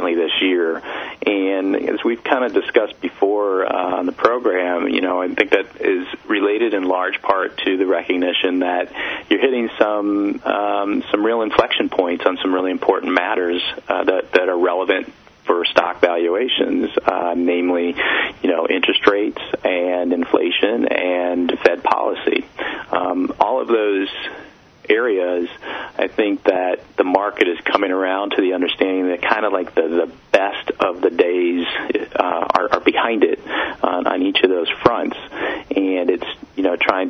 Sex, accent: male, American